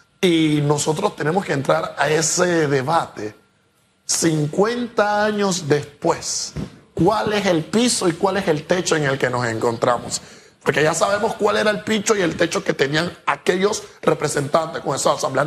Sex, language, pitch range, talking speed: male, Spanish, 150-195 Hz, 165 wpm